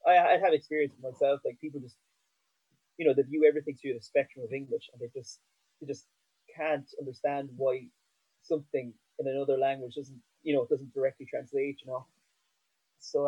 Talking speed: 180 wpm